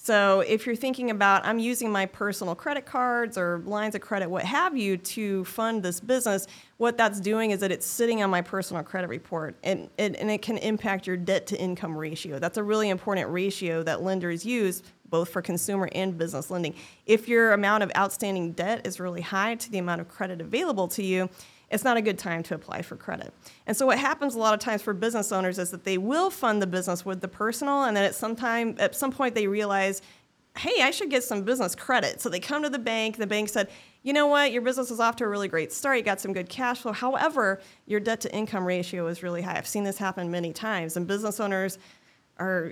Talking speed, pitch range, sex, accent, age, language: 235 wpm, 185-235 Hz, female, American, 30-49, English